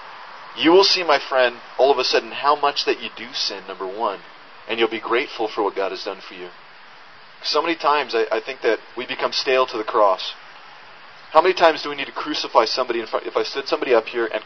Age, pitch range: 30-49, 110-150 Hz